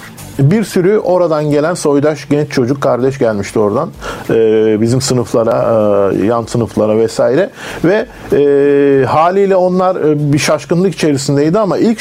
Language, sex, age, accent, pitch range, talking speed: Turkish, male, 50-69, native, 120-155 Hz, 135 wpm